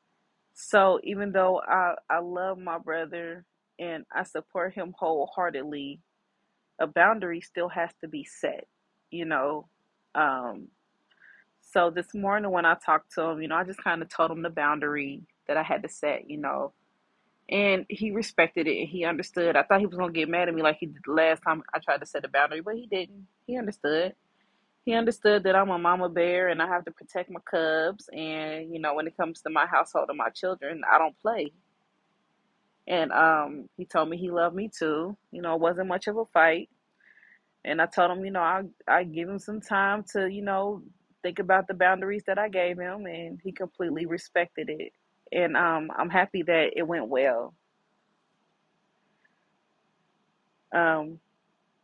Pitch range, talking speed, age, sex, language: 165-195 Hz, 190 wpm, 20-39, female, English